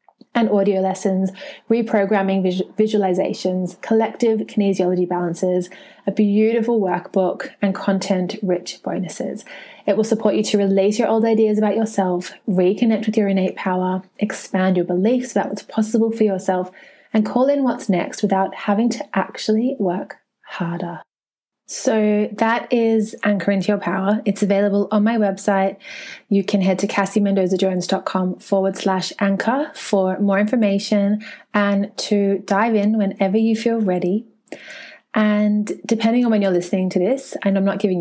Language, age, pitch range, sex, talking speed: English, 20-39, 190-225 Hz, female, 145 wpm